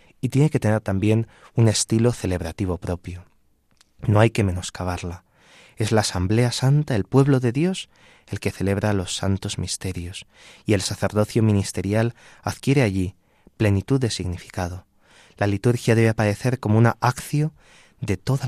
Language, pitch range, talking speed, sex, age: Spanish, 95-120 Hz, 145 wpm, male, 30-49